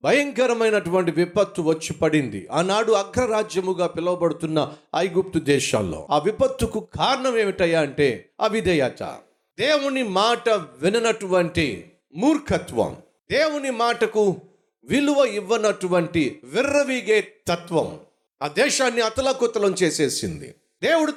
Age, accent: 50-69, native